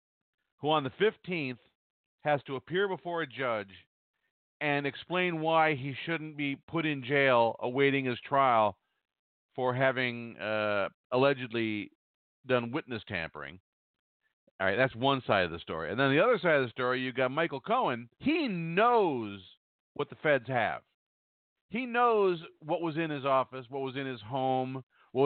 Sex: male